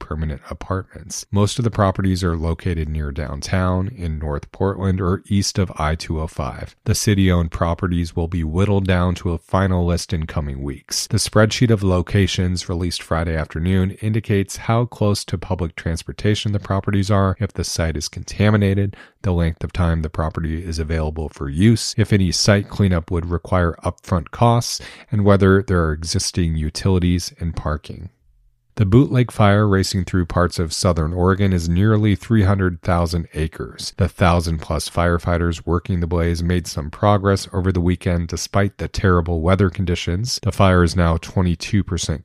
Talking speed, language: 160 wpm, English